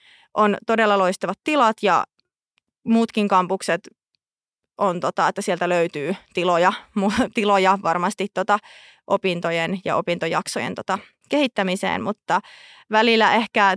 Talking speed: 90 wpm